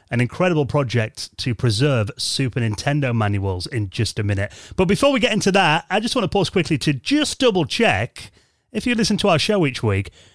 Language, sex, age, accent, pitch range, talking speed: English, male, 30-49, British, 105-150 Hz, 210 wpm